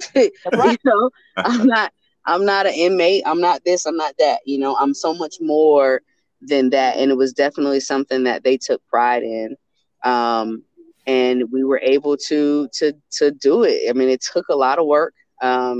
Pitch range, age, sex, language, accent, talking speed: 135-175 Hz, 20-39, female, English, American, 200 wpm